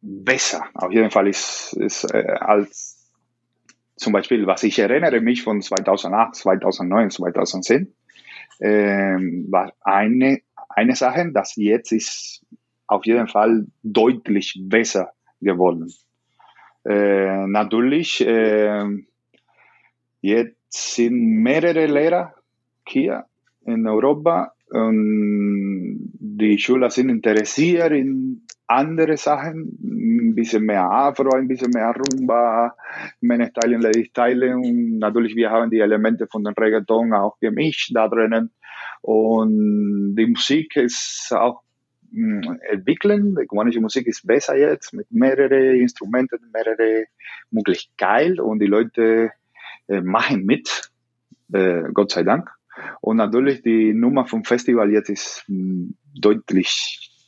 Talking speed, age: 115 wpm, 30-49